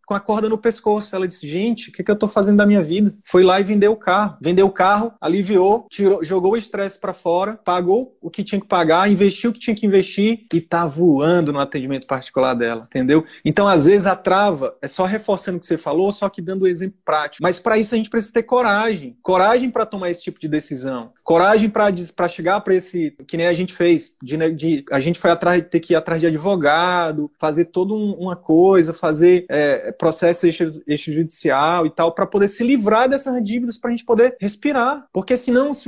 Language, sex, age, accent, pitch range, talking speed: Portuguese, male, 20-39, Brazilian, 175-220 Hz, 225 wpm